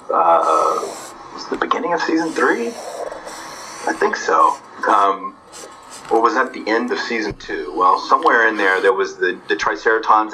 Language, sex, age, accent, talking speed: English, male, 40-59, American, 170 wpm